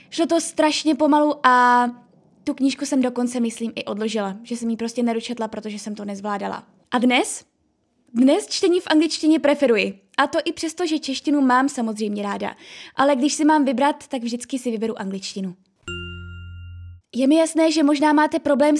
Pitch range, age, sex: 220-285 Hz, 20-39, female